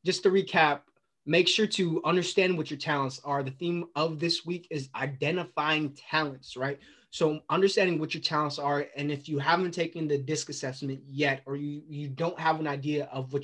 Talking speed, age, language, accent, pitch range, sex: 195 wpm, 20-39, English, American, 140-165 Hz, male